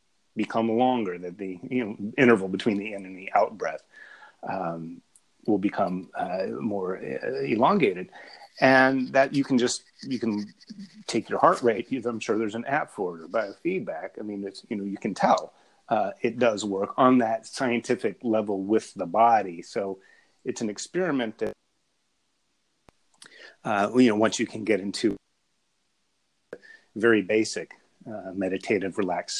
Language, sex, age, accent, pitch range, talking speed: English, male, 30-49, American, 100-135 Hz, 155 wpm